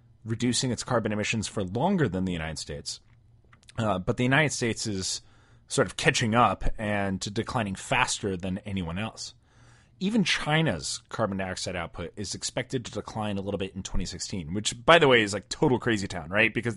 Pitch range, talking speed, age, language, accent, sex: 100-125 Hz, 185 wpm, 30-49, English, American, male